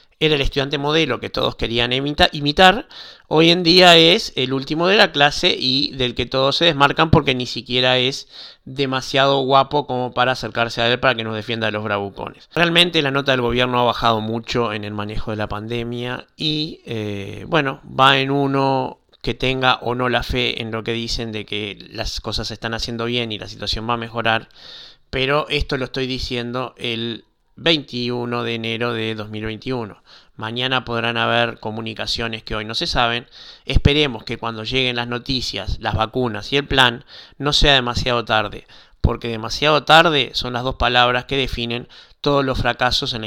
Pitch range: 115-140 Hz